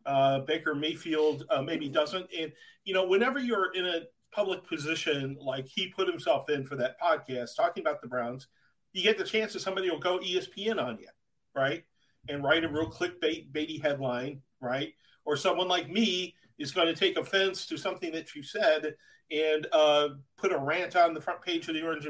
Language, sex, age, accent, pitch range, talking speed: English, male, 40-59, American, 135-180 Hz, 200 wpm